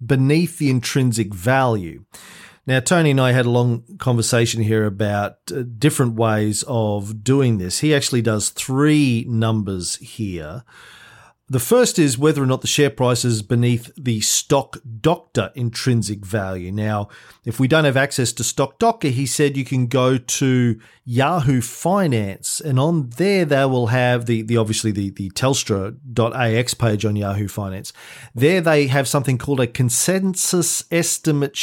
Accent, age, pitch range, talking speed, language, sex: Australian, 40-59, 110-140 Hz, 155 wpm, English, male